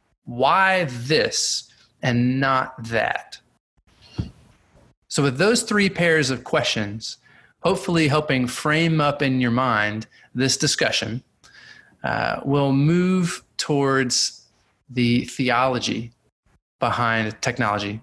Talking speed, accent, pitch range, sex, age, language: 95 wpm, American, 130-175 Hz, male, 30-49, English